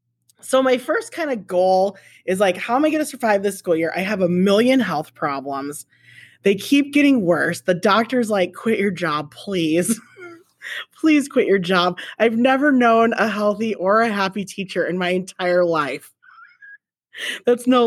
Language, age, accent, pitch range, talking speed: English, 20-39, American, 155-225 Hz, 180 wpm